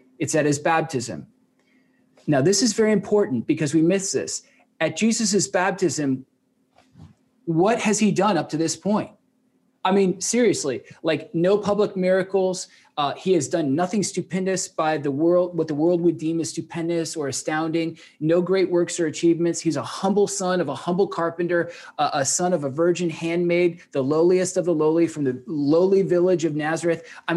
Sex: male